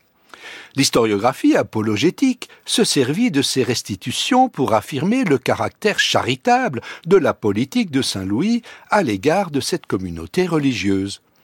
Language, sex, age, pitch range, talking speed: French, male, 60-79, 140-180 Hz, 120 wpm